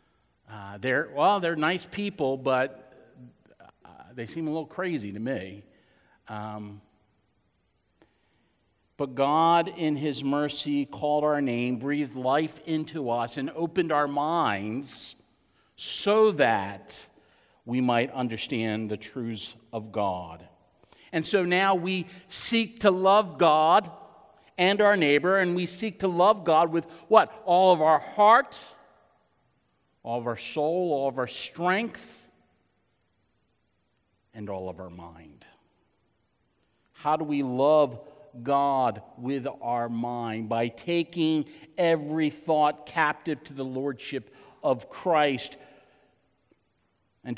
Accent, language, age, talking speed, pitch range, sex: American, English, 50-69, 120 wpm, 115-160 Hz, male